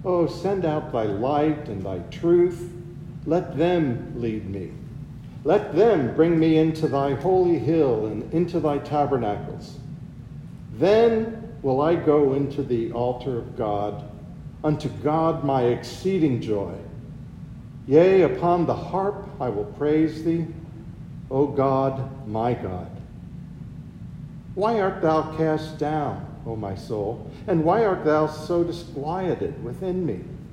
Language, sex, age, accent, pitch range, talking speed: English, male, 50-69, American, 130-165 Hz, 130 wpm